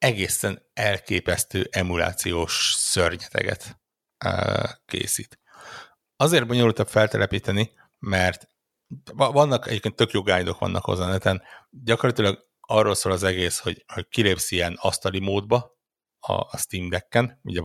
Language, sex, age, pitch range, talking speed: Hungarian, male, 60-79, 85-105 Hz, 110 wpm